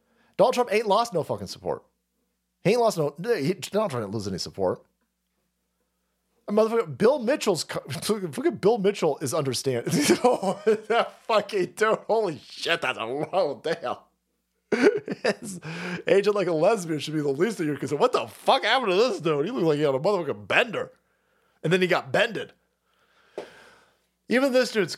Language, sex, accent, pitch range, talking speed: English, male, American, 145-215 Hz, 170 wpm